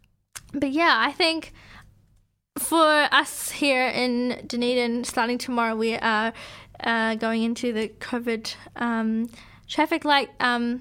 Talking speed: 120 wpm